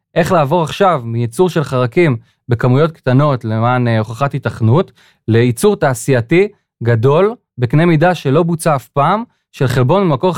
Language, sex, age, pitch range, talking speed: Hebrew, male, 20-39, 125-165 Hz, 135 wpm